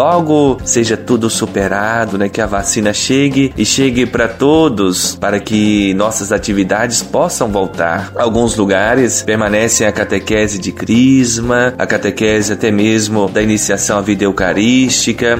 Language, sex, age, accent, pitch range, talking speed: Portuguese, male, 20-39, Brazilian, 105-120 Hz, 135 wpm